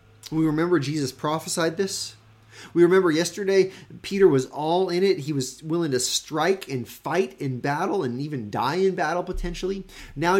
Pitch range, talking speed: 115-175 Hz, 165 wpm